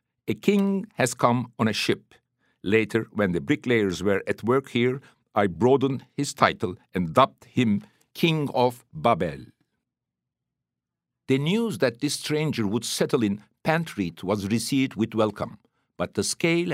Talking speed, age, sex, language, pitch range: 145 wpm, 60-79, male, English, 110-145 Hz